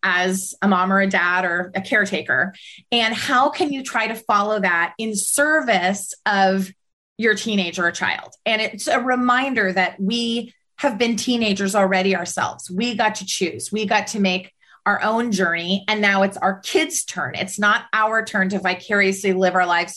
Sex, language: female, English